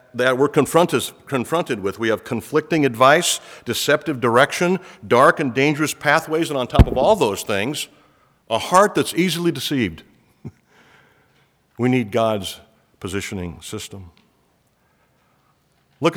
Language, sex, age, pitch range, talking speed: English, male, 50-69, 110-150 Hz, 120 wpm